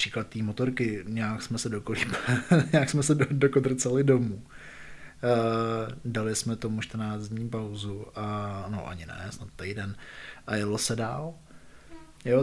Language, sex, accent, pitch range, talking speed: Czech, male, native, 110-135 Hz, 120 wpm